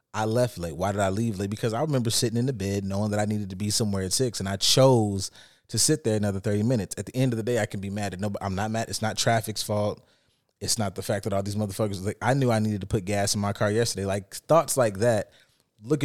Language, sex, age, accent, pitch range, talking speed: English, male, 30-49, American, 105-140 Hz, 290 wpm